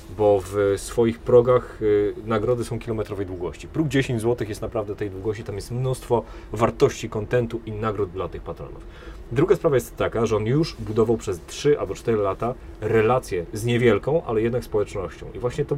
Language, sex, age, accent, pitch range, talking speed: Polish, male, 30-49, native, 90-125 Hz, 180 wpm